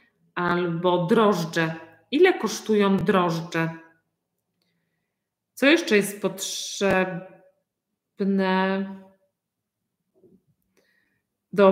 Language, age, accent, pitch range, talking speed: Polish, 40-59, native, 185-250 Hz, 50 wpm